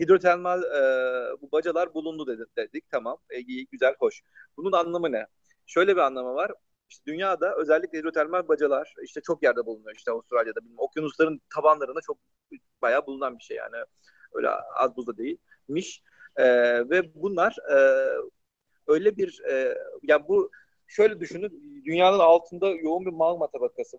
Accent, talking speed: native, 145 wpm